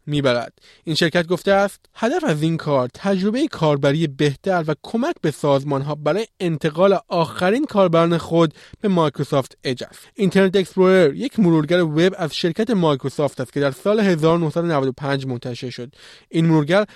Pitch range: 150-195 Hz